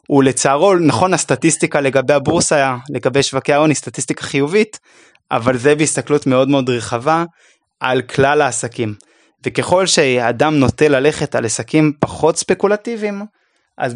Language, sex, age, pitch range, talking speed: Hebrew, male, 20-39, 125-150 Hz, 120 wpm